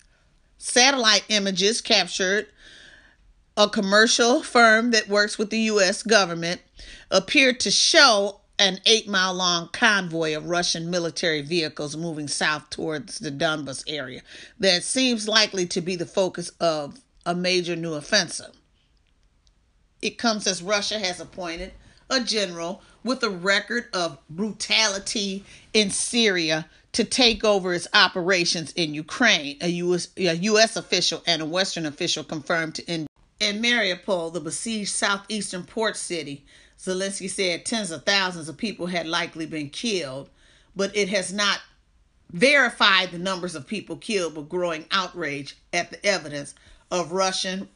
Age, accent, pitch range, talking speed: 40-59, American, 165-210 Hz, 140 wpm